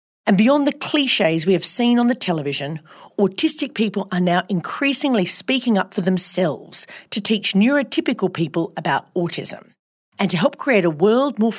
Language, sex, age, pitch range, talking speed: English, female, 40-59, 180-250 Hz, 165 wpm